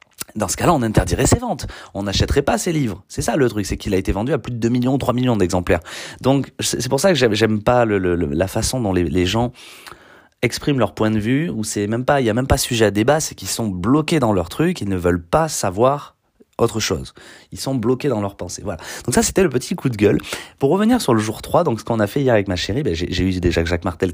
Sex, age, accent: male, 30-49, French